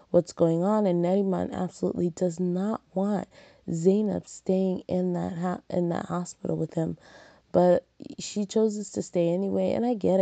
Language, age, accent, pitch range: English, 20-39, American, 170-190 Hz